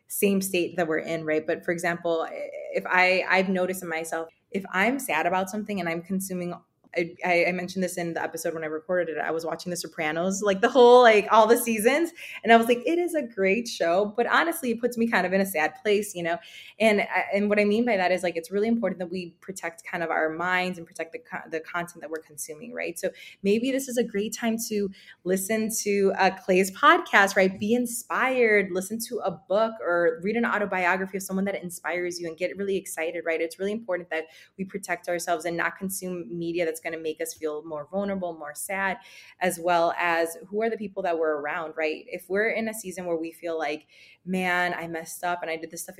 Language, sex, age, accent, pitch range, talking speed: English, female, 20-39, American, 165-200 Hz, 235 wpm